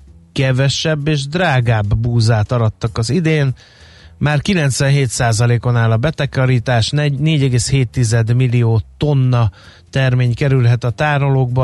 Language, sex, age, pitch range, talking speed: Hungarian, male, 30-49, 115-140 Hz, 100 wpm